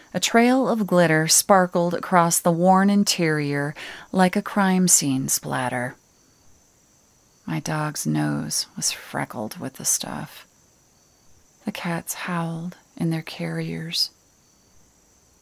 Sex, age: female, 30-49